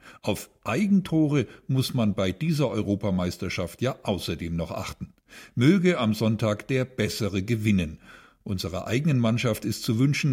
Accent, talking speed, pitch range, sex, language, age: German, 135 wpm, 100-130 Hz, male, German, 50-69